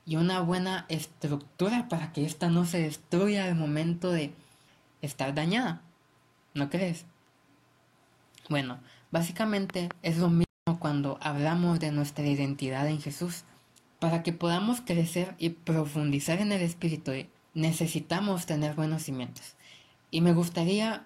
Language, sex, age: Italian, female, 20-39